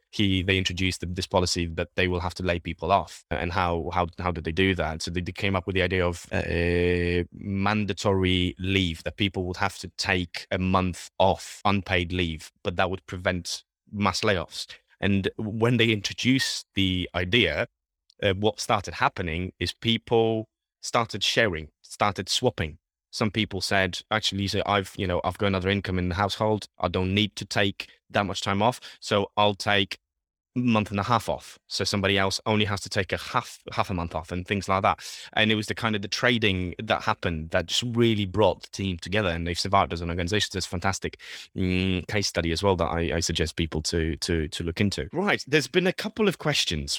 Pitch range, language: 90-105 Hz, English